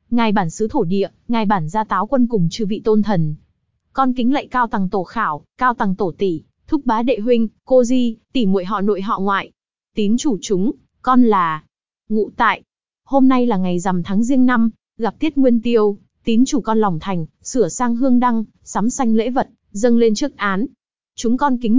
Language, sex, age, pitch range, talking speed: Vietnamese, female, 20-39, 195-245 Hz, 210 wpm